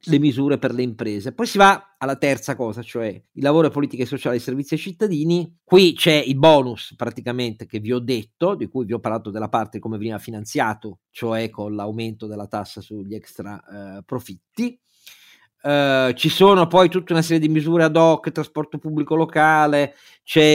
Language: Italian